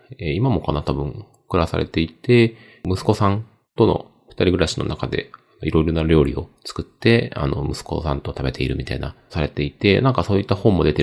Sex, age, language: male, 30-49, Japanese